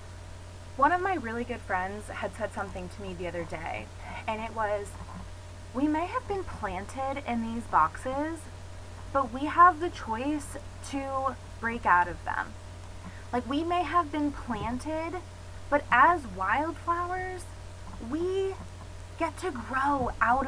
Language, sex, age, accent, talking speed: English, female, 20-39, American, 145 wpm